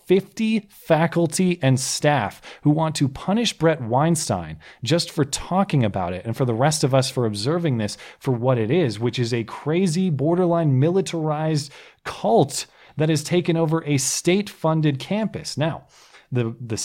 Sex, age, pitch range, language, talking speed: male, 30-49, 120-165 Hz, English, 160 wpm